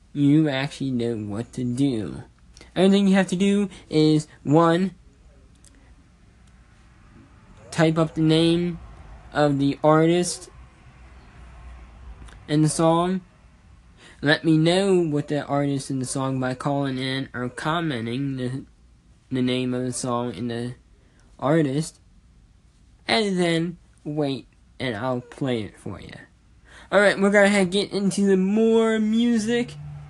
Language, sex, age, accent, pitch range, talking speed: English, male, 10-29, American, 110-165 Hz, 130 wpm